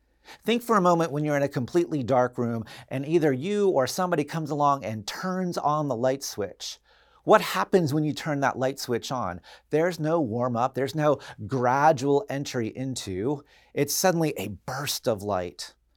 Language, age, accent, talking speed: English, 40-59, American, 175 wpm